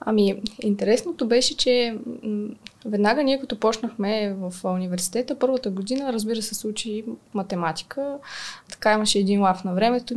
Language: Bulgarian